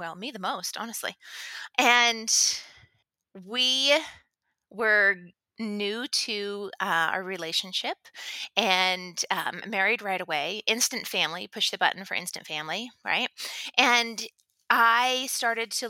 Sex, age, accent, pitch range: female, 30-49, American, 190-240 Hz